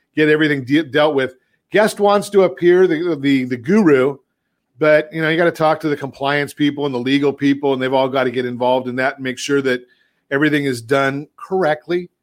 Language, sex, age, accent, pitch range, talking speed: English, male, 40-59, American, 135-165 Hz, 220 wpm